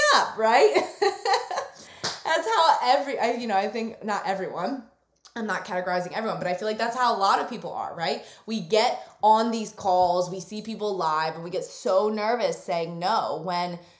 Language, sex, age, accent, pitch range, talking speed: English, female, 20-39, American, 180-235 Hz, 185 wpm